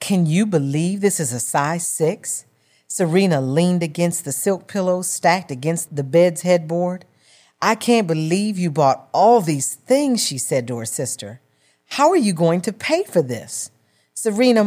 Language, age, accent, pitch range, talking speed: English, 40-59, American, 145-205 Hz, 170 wpm